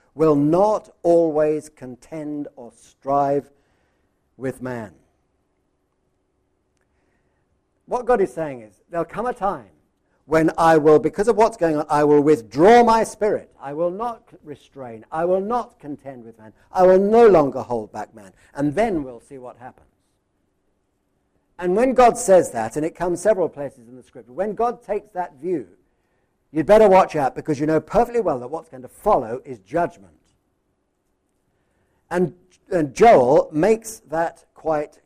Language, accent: English, British